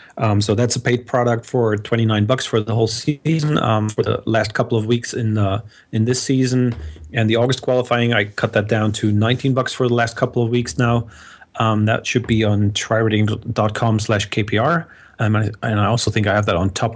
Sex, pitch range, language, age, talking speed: male, 110-130 Hz, English, 30-49, 220 wpm